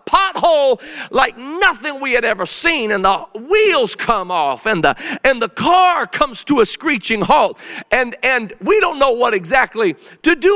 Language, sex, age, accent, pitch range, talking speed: English, male, 40-59, American, 195-285 Hz, 175 wpm